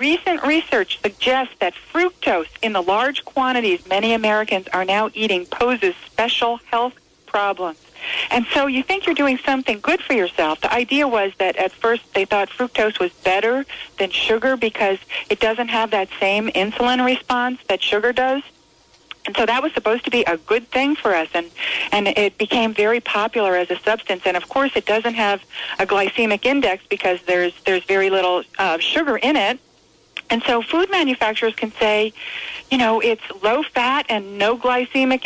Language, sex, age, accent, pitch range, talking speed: English, female, 40-59, American, 200-260 Hz, 180 wpm